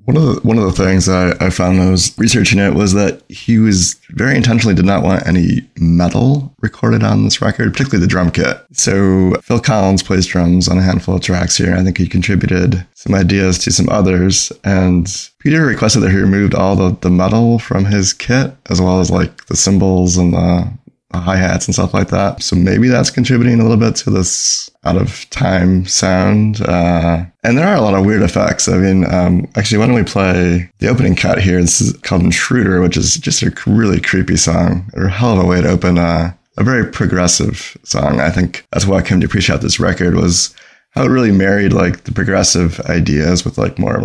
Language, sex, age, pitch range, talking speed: English, male, 20-39, 90-110 Hz, 220 wpm